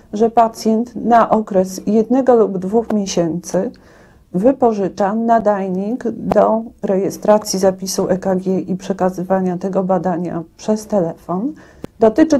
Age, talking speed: 40-59, 100 wpm